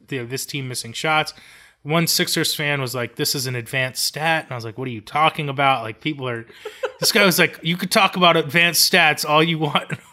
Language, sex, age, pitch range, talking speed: English, male, 20-39, 135-170 Hz, 235 wpm